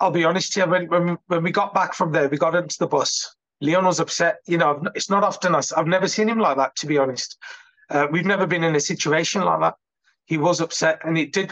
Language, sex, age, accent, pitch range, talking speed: English, male, 30-49, British, 150-185 Hz, 260 wpm